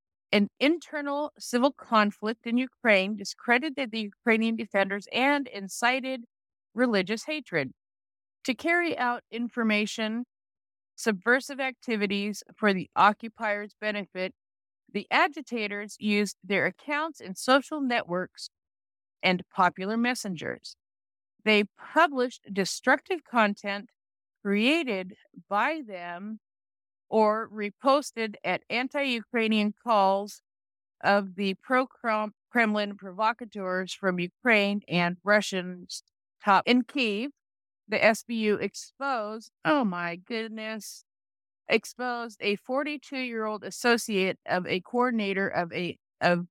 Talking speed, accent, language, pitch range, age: 95 wpm, American, English, 190-245 Hz, 50-69